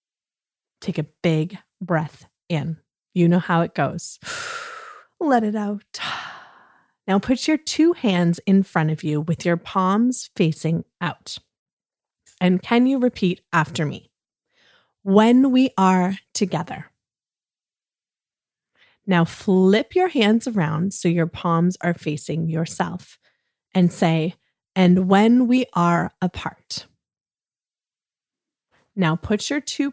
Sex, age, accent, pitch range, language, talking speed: female, 30-49, American, 170-220 Hz, English, 120 wpm